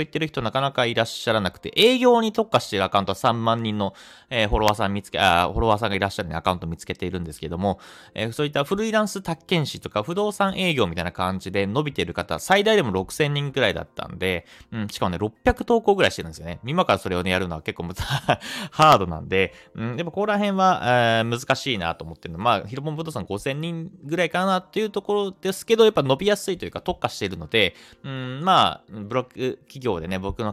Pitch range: 95-155 Hz